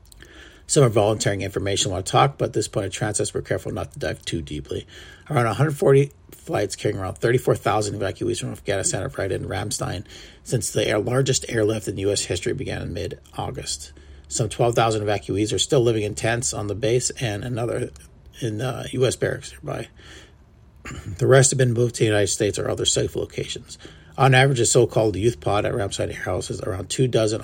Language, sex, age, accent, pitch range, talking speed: English, male, 40-59, American, 90-125 Hz, 190 wpm